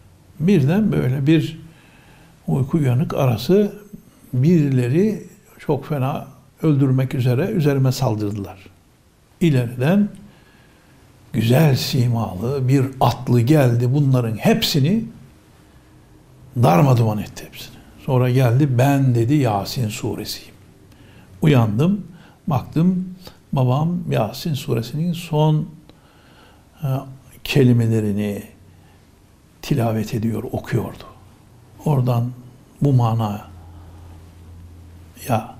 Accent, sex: native, male